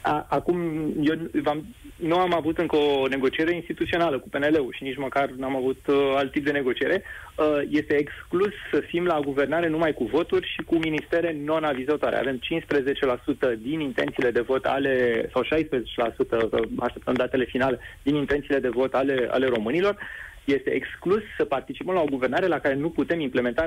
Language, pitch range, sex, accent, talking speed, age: Romanian, 130-160 Hz, male, native, 170 wpm, 20-39